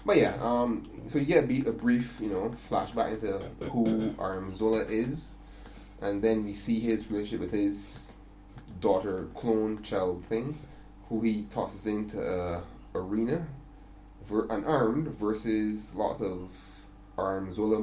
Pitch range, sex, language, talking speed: 100-115 Hz, male, English, 135 wpm